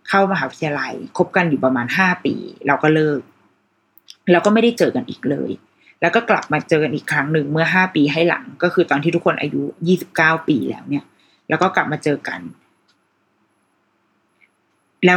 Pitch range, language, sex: 155-200 Hz, Thai, female